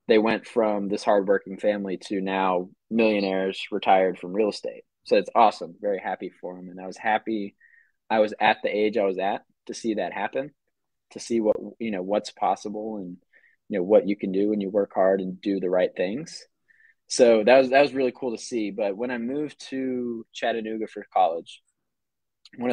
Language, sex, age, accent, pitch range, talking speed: English, male, 20-39, American, 95-120 Hz, 205 wpm